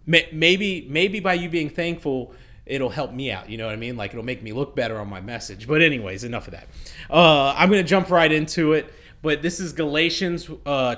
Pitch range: 130-170 Hz